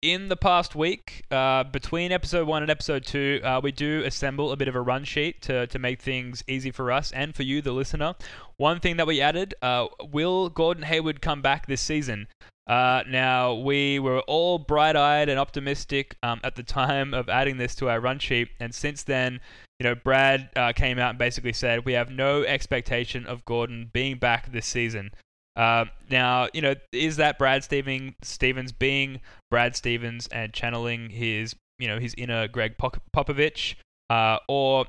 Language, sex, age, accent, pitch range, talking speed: English, male, 10-29, Australian, 115-140 Hz, 195 wpm